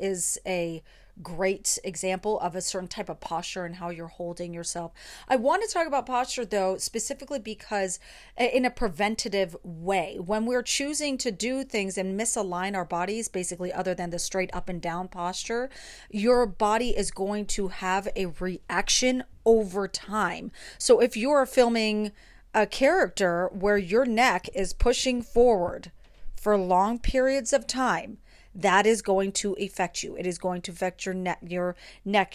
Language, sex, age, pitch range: English, female, 30-49, 185-250 Hz